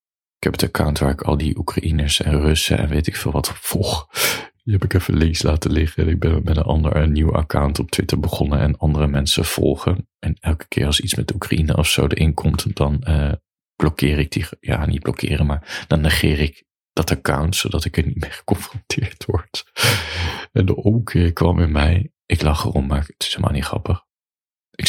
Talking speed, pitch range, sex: 210 wpm, 75-95 Hz, male